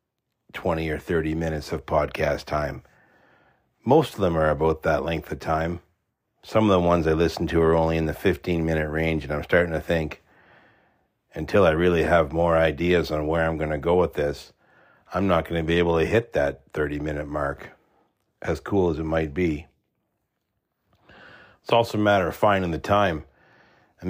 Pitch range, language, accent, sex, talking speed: 80-90 Hz, English, American, male, 190 wpm